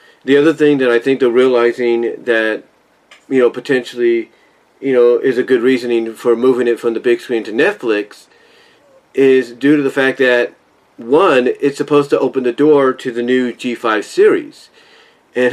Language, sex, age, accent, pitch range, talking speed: English, male, 40-59, American, 120-145 Hz, 180 wpm